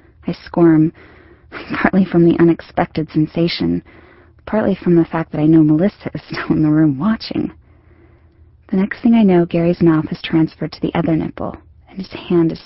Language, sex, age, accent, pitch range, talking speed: English, female, 30-49, American, 105-175 Hz, 180 wpm